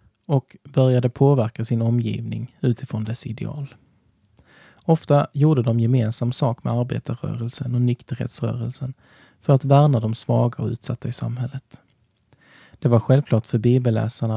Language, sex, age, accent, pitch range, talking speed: Swedish, male, 20-39, native, 115-135 Hz, 130 wpm